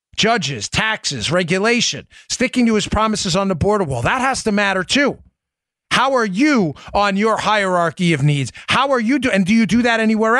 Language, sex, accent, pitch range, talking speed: English, male, American, 190-230 Hz, 195 wpm